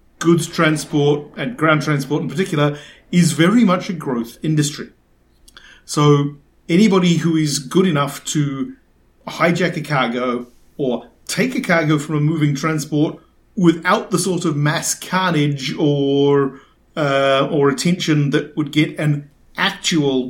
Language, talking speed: English, 135 wpm